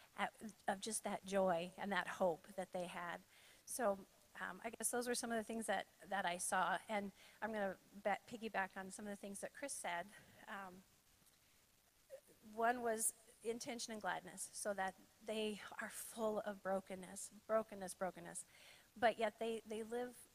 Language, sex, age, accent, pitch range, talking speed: English, female, 40-59, American, 190-225 Hz, 175 wpm